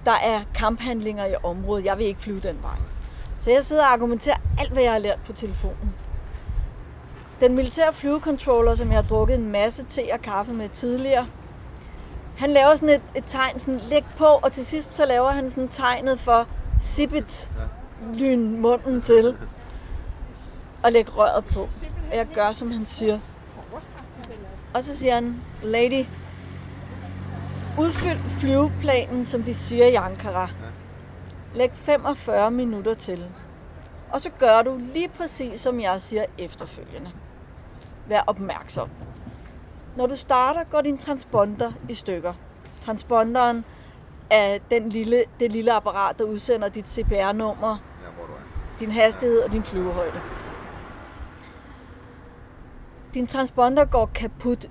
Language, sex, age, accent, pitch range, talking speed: Danish, female, 30-49, native, 205-260 Hz, 135 wpm